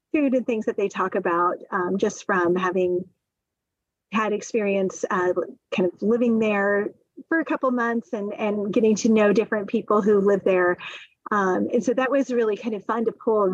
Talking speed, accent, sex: 185 wpm, American, female